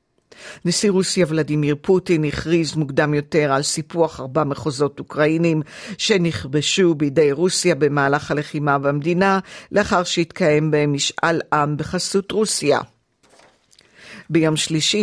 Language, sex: Hebrew, female